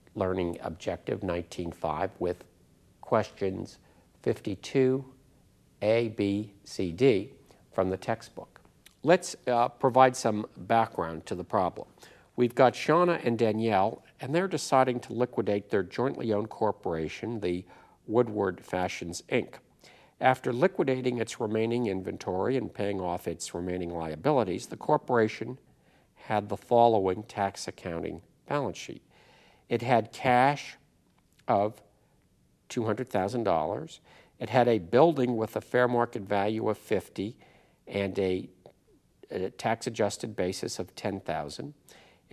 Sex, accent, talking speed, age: male, American, 115 wpm, 50-69